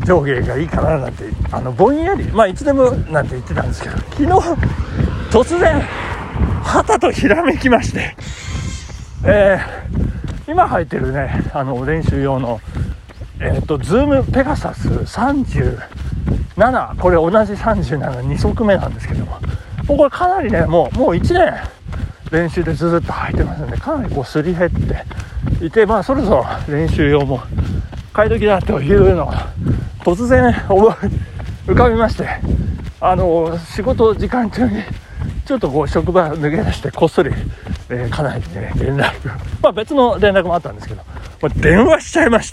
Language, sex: Japanese, male